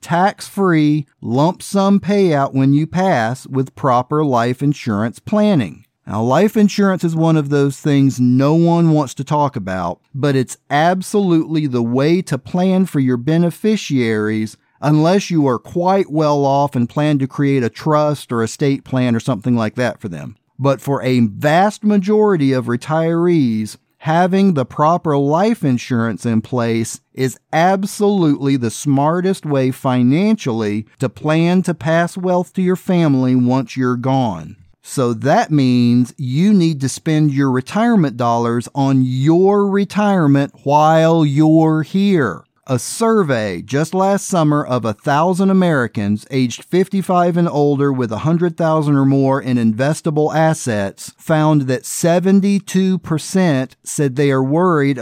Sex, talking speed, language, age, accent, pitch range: male, 140 wpm, English, 40-59, American, 130-175 Hz